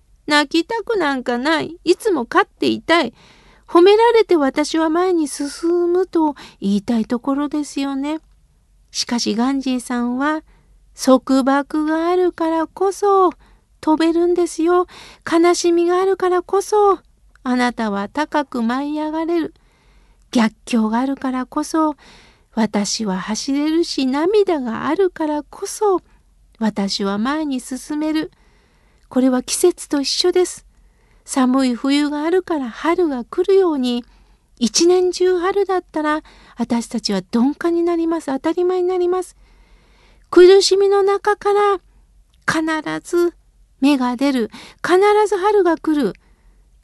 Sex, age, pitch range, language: female, 50-69, 275-360 Hz, Japanese